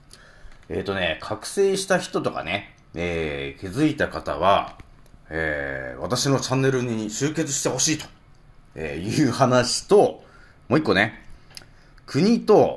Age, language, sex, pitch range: 30-49, Japanese, male, 90-150 Hz